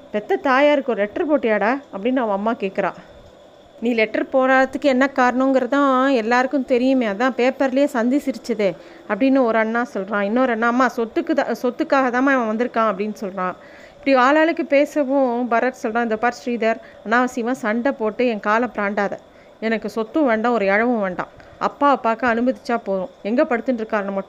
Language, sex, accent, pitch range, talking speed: Tamil, female, native, 210-270 Hz, 150 wpm